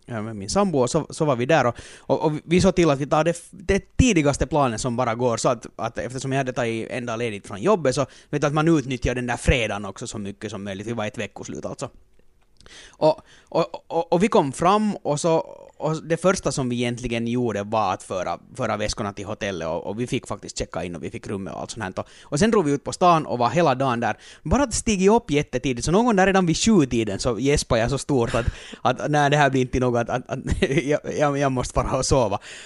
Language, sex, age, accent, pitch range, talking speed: Finnish, male, 30-49, native, 120-180 Hz, 255 wpm